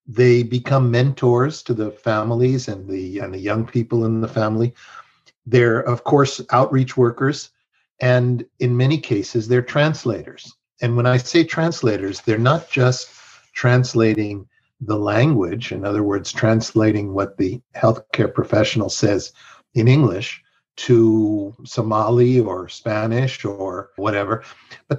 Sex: male